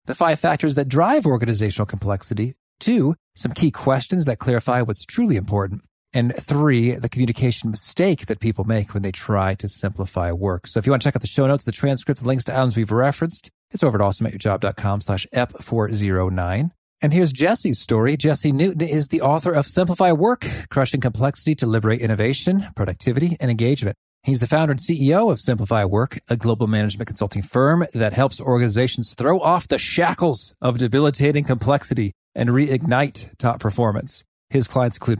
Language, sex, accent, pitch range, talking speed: English, male, American, 105-145 Hz, 175 wpm